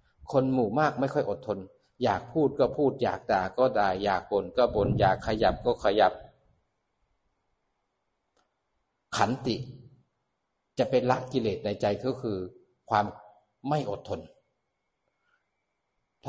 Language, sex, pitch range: Thai, male, 105-130 Hz